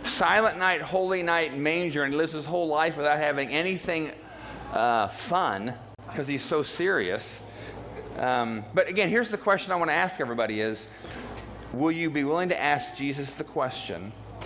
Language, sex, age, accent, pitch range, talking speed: English, male, 40-59, American, 130-170 Hz, 170 wpm